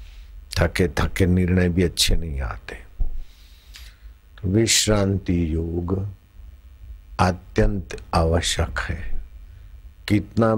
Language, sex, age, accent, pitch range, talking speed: Hindi, male, 60-79, native, 80-100 Hz, 80 wpm